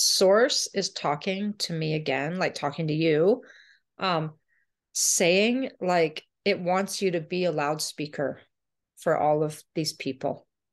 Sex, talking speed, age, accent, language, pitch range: female, 140 wpm, 30-49, American, English, 165-240 Hz